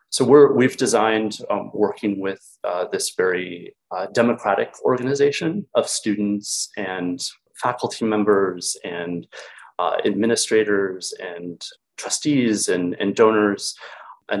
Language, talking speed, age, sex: English, 110 wpm, 30-49, male